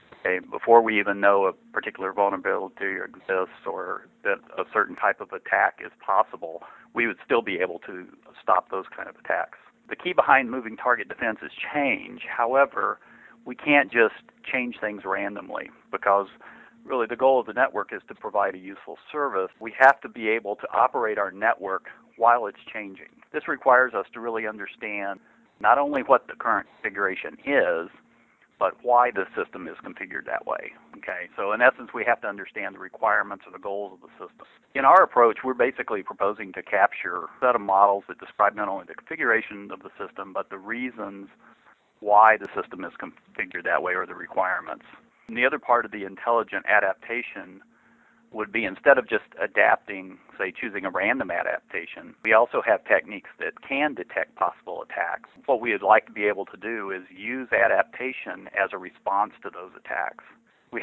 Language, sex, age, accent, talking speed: English, male, 40-59, American, 185 wpm